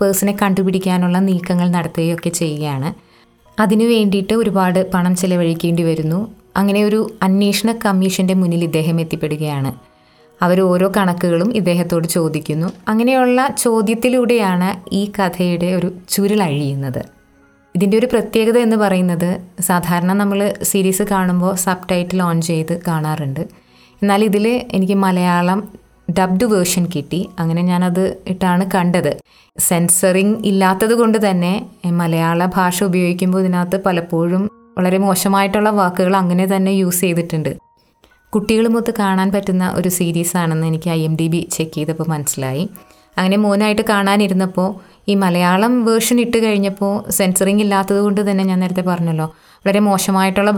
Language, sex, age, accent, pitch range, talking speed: Malayalam, female, 20-39, native, 170-200 Hz, 115 wpm